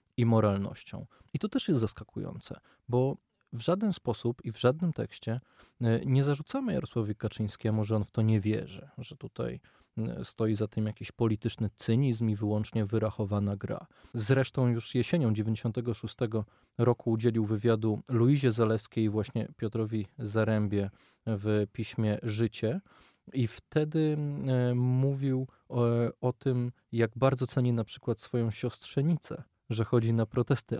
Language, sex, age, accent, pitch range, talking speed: Polish, male, 20-39, native, 110-130 Hz, 135 wpm